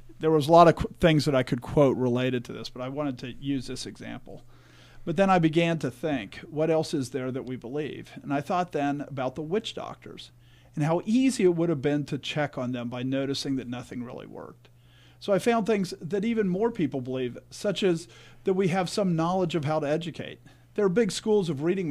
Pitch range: 130-180 Hz